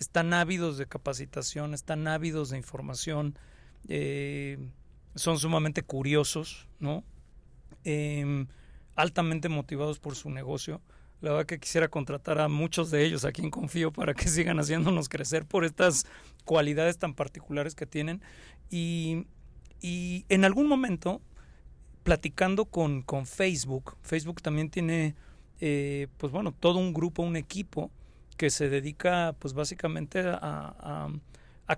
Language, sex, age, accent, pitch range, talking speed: Spanish, male, 40-59, Mexican, 145-170 Hz, 135 wpm